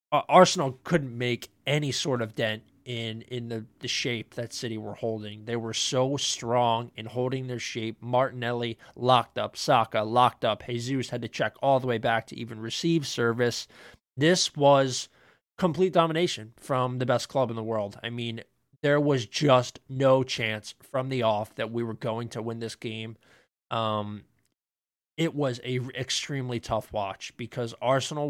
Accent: American